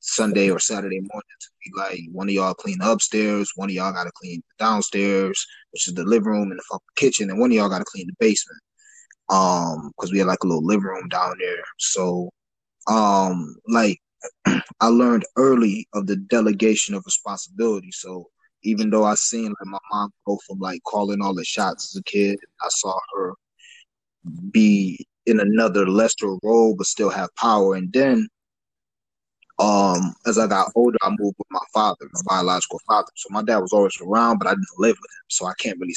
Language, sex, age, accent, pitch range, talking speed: English, male, 20-39, American, 95-115 Hz, 205 wpm